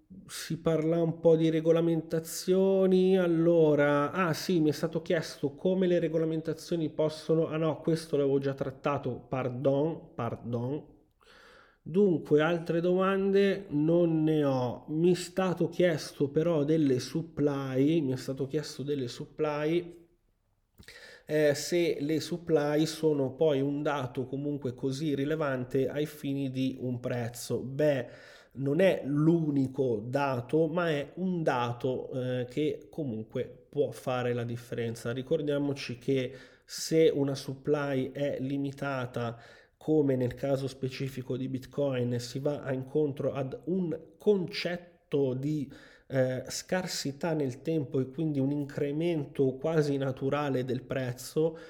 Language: Italian